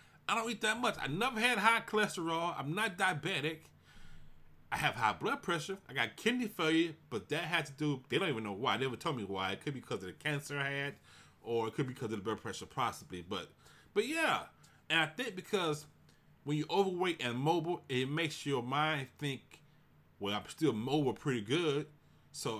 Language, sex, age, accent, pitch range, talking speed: English, male, 30-49, American, 135-180 Hz, 210 wpm